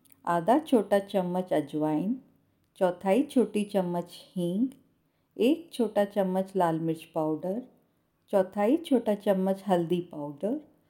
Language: Hindi